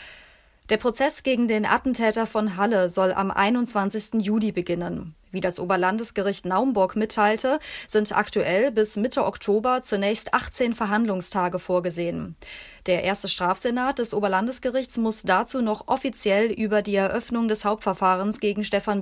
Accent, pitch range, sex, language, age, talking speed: German, 190-230 Hz, female, German, 30-49, 135 wpm